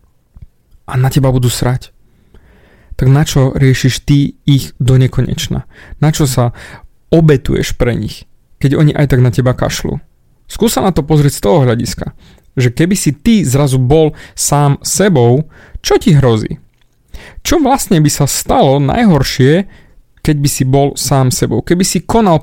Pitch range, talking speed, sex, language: 125-155 Hz, 160 wpm, male, Slovak